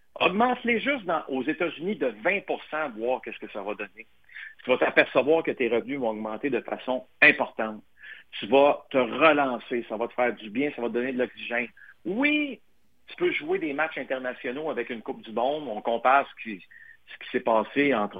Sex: male